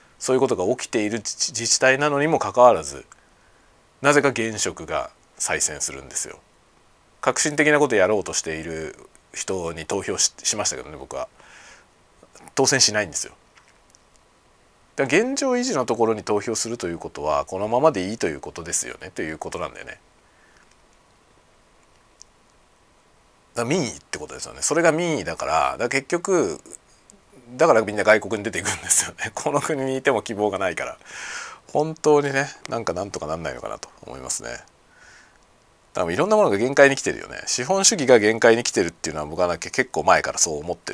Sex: male